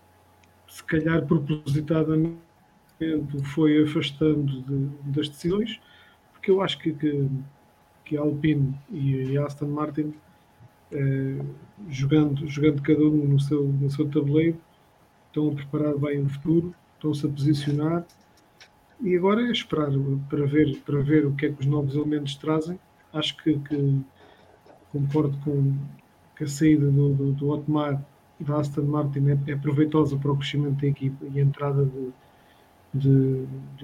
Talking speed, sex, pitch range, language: 145 wpm, male, 140-155 Hz, English